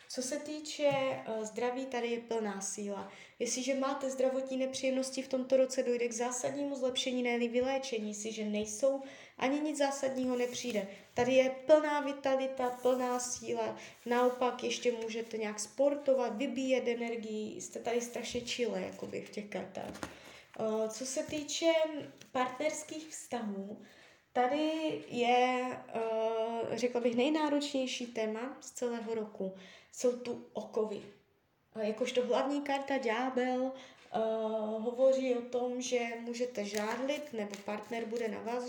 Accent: native